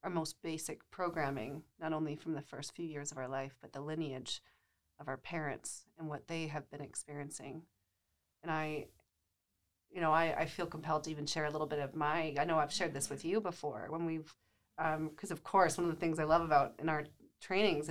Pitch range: 140-170 Hz